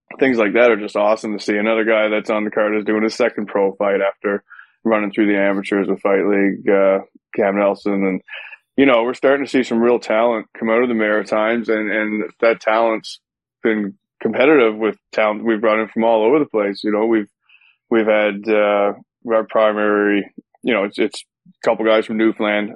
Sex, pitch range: male, 100-115 Hz